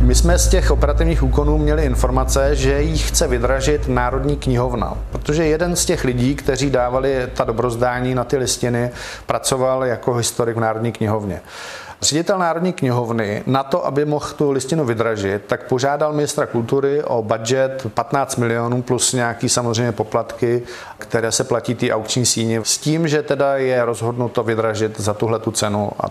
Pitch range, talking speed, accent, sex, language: 115-130 Hz, 165 wpm, native, male, Czech